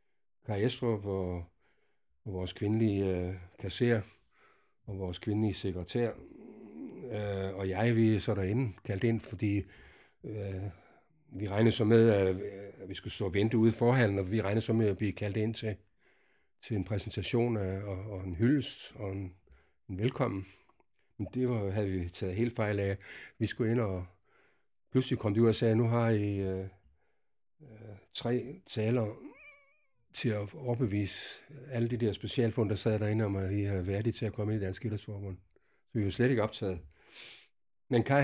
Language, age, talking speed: Danish, 60-79, 175 wpm